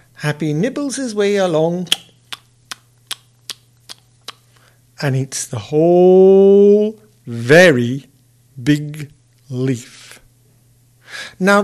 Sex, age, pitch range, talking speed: male, 60-79, 120-180 Hz, 65 wpm